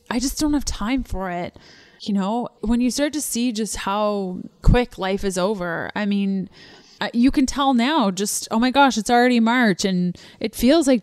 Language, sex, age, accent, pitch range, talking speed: English, female, 20-39, American, 200-260 Hz, 200 wpm